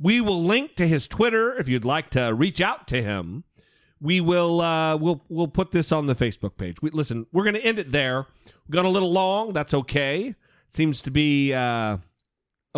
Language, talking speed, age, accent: English, 200 wpm, 40-59, American